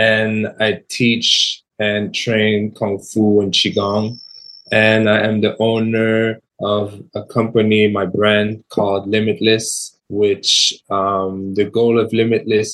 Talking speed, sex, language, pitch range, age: 125 wpm, male, English, 100-110 Hz, 20-39